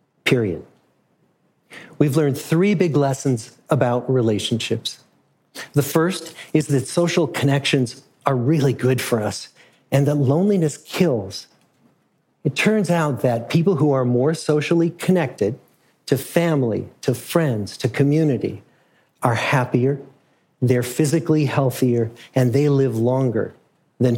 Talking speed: 120 wpm